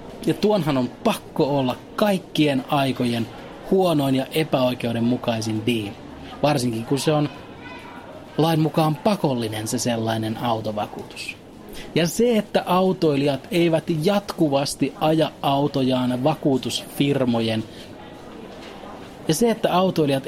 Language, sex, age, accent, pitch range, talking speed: Finnish, male, 30-49, native, 120-155 Hz, 100 wpm